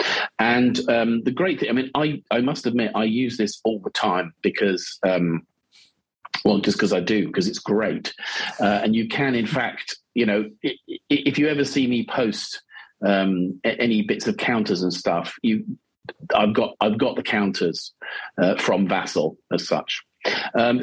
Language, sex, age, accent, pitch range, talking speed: English, male, 40-59, British, 105-135 Hz, 180 wpm